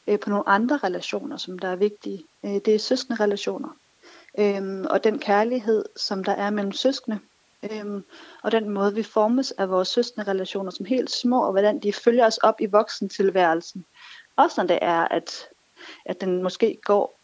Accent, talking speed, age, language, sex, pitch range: native, 170 wpm, 40-59, Danish, female, 195-235 Hz